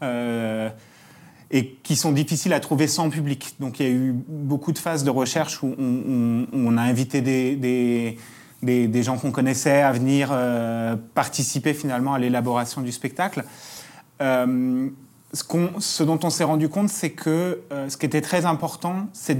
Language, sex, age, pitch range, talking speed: French, male, 30-49, 135-170 Hz, 185 wpm